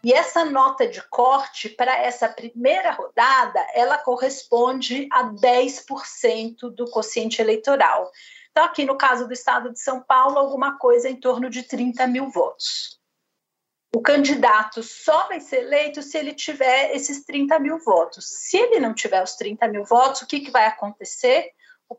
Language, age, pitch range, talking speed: Portuguese, 40-59, 240-305 Hz, 165 wpm